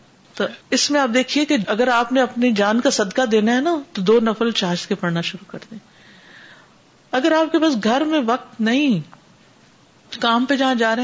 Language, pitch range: Urdu, 195-245 Hz